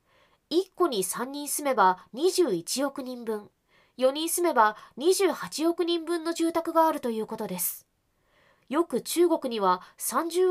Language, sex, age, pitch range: Japanese, female, 20-39, 220-330 Hz